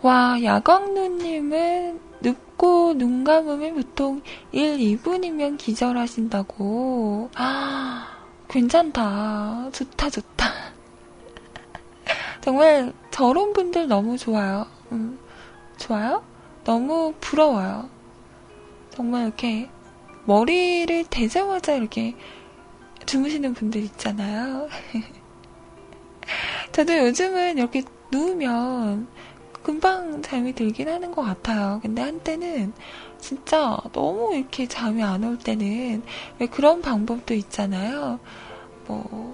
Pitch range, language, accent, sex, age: 220-310 Hz, Korean, native, female, 20-39